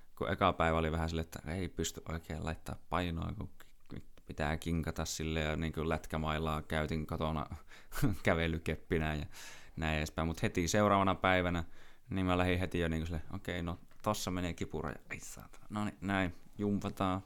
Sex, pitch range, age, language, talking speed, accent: male, 80-90 Hz, 20-39, Finnish, 160 wpm, native